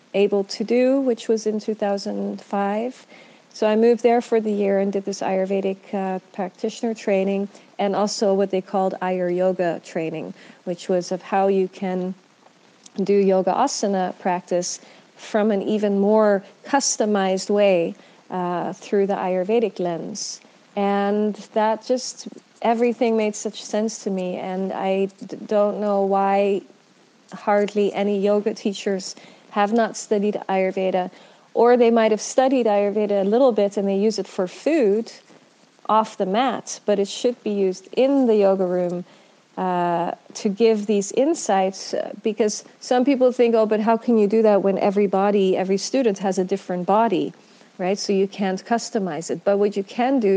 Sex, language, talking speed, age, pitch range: female, English, 160 wpm, 40-59, 190-225 Hz